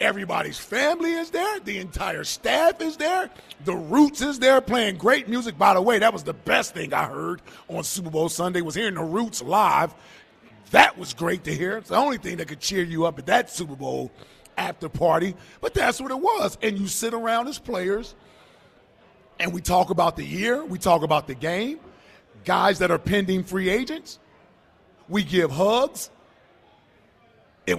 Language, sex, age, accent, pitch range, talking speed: English, male, 40-59, American, 190-250 Hz, 190 wpm